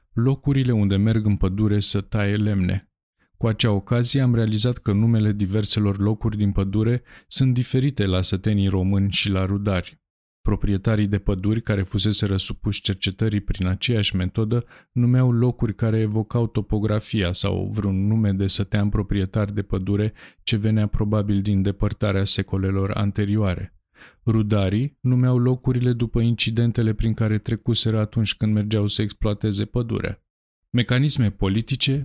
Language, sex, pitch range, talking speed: Romanian, male, 95-115 Hz, 135 wpm